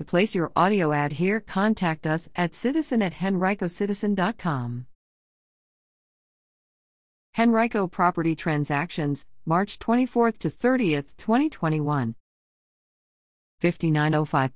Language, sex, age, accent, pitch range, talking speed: English, female, 50-69, American, 145-190 Hz, 85 wpm